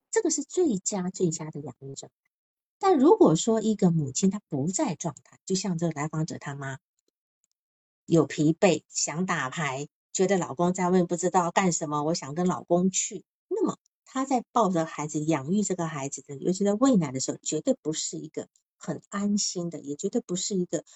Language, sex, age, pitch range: Chinese, female, 50-69, 155-230 Hz